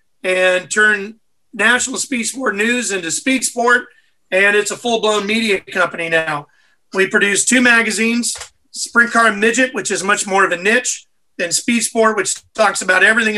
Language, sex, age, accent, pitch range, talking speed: English, male, 40-59, American, 200-235 Hz, 170 wpm